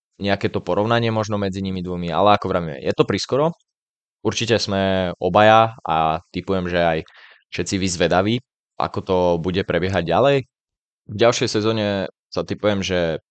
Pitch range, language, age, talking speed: 90-105 Hz, Slovak, 20-39, 150 wpm